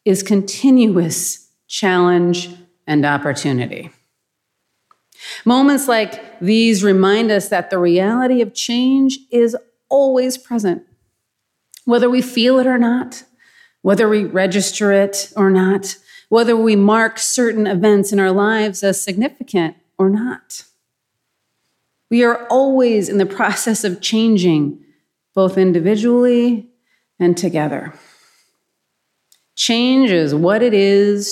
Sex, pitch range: female, 180-240 Hz